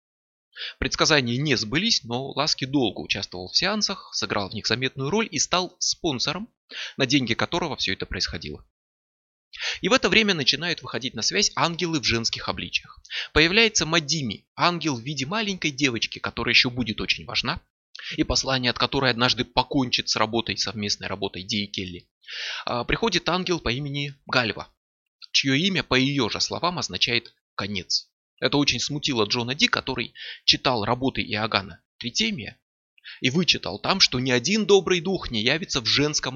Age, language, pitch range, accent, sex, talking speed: 20-39, Russian, 115-155 Hz, native, male, 155 wpm